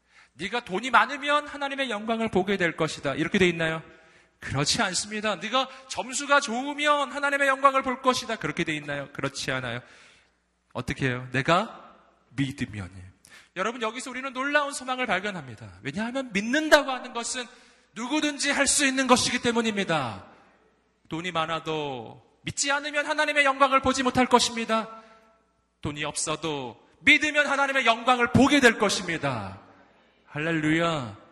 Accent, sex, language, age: native, male, Korean, 30-49